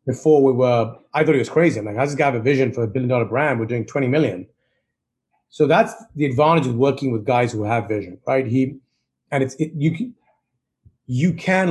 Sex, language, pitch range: male, English, 115-145 Hz